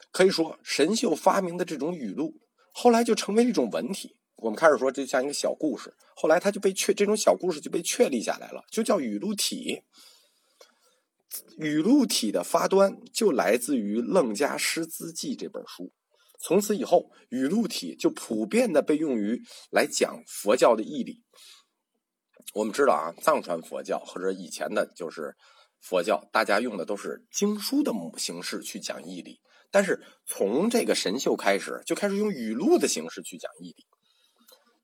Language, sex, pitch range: Chinese, male, 190-260 Hz